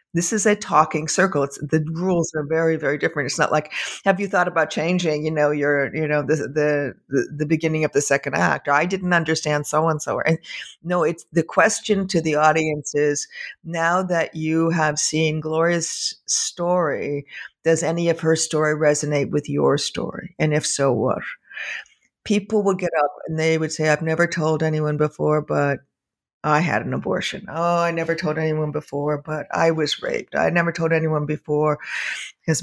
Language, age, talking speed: English, 50-69, 185 wpm